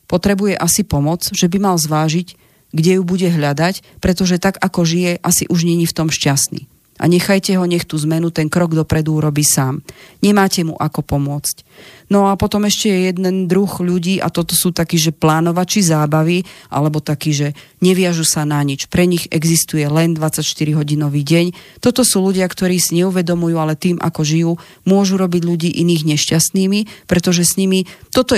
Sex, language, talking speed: female, Slovak, 180 wpm